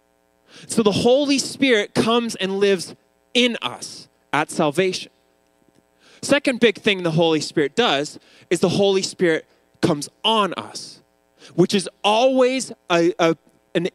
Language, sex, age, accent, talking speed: English, male, 20-39, American, 125 wpm